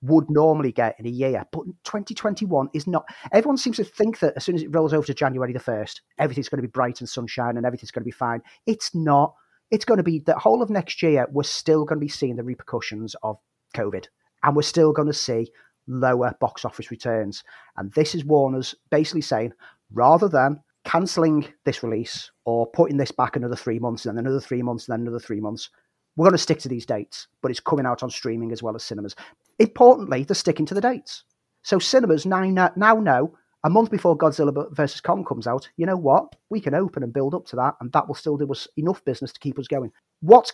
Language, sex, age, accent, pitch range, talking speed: English, male, 30-49, British, 120-160 Hz, 235 wpm